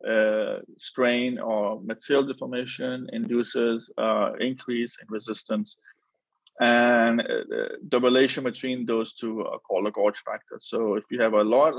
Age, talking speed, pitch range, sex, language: 20-39, 145 wpm, 110-130 Hz, male, English